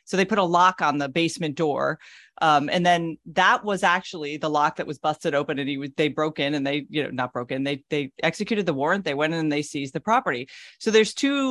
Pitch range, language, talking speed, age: 150-200 Hz, English, 250 wpm, 40-59